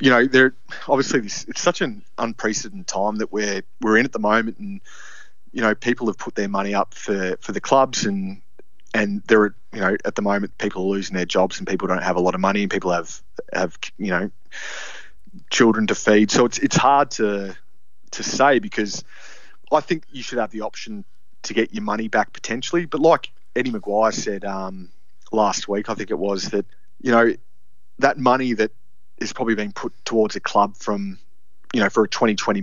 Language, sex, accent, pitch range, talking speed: English, male, Australian, 95-115 Hz, 205 wpm